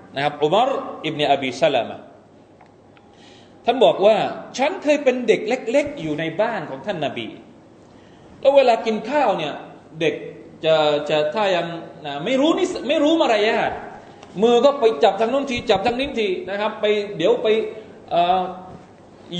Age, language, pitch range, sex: 20-39, Thai, 160-225 Hz, male